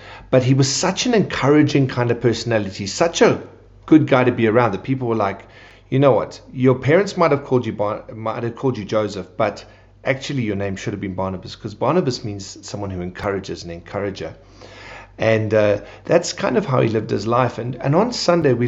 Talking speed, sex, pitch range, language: 210 wpm, male, 105-135 Hz, English